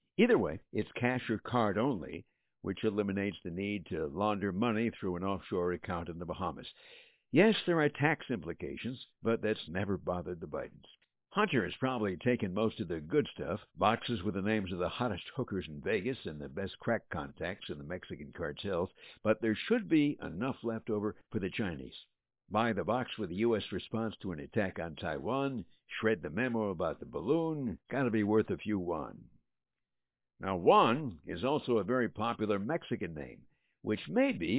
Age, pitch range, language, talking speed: 60-79, 95-120 Hz, English, 185 wpm